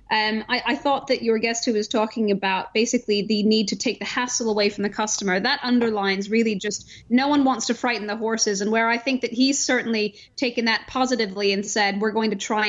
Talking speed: 230 wpm